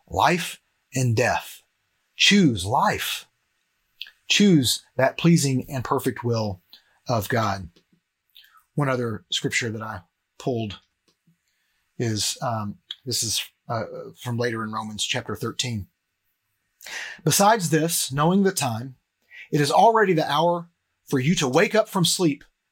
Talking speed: 125 wpm